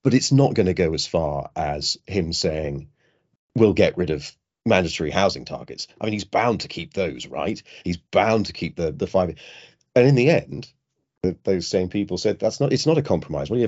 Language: English